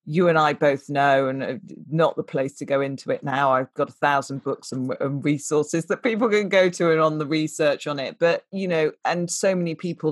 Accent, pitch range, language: British, 135-160 Hz, English